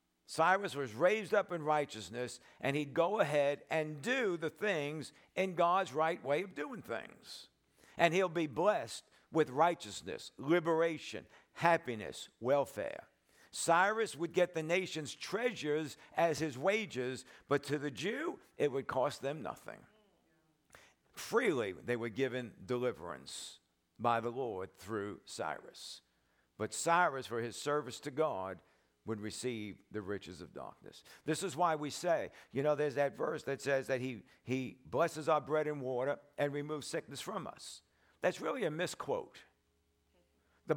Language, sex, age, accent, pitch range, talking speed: English, male, 60-79, American, 105-160 Hz, 150 wpm